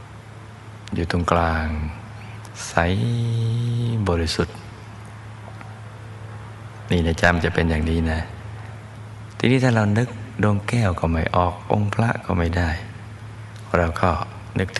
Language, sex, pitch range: Thai, male, 90-110 Hz